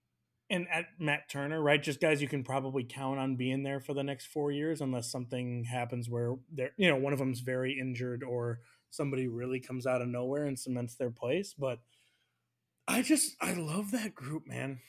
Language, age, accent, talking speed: English, 20-39, American, 200 wpm